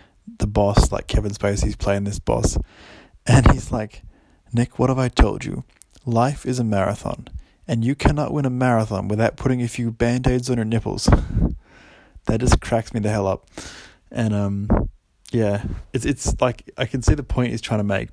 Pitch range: 100-120 Hz